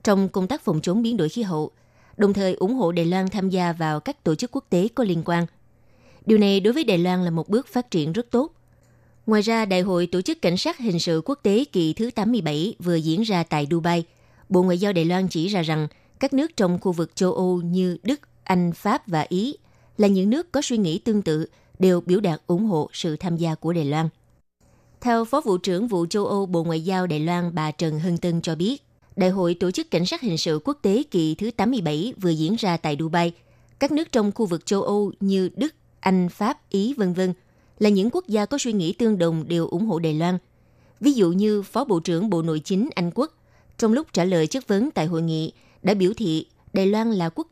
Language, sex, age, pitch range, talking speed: Vietnamese, female, 20-39, 165-215 Hz, 240 wpm